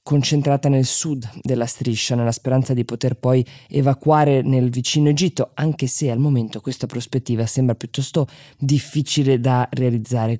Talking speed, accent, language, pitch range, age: 145 wpm, native, Italian, 125-140 Hz, 20-39